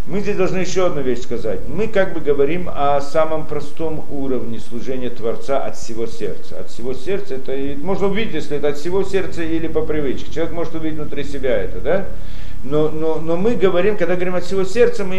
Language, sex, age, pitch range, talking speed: Russian, male, 50-69, 125-185 Hz, 210 wpm